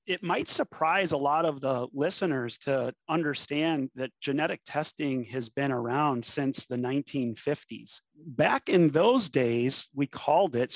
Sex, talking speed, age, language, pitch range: male, 145 wpm, 30-49, English, 130-160 Hz